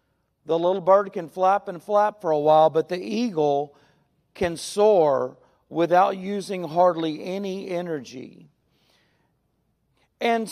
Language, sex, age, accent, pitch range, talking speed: English, male, 40-59, American, 175-245 Hz, 120 wpm